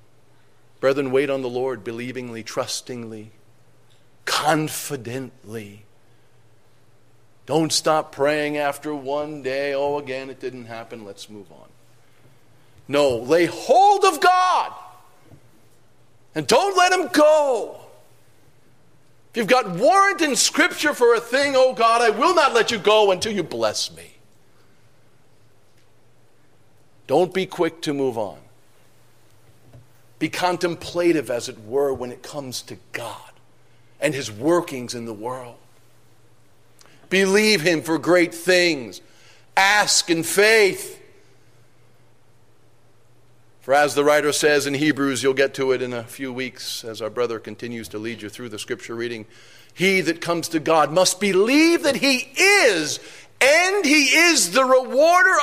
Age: 50-69